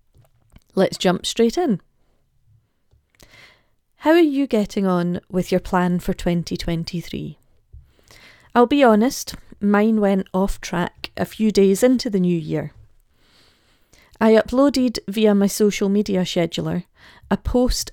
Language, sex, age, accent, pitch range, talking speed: English, female, 40-59, British, 180-220 Hz, 125 wpm